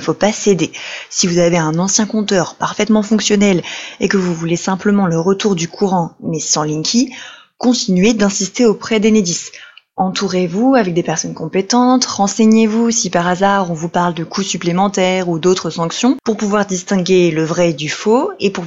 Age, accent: 20-39, French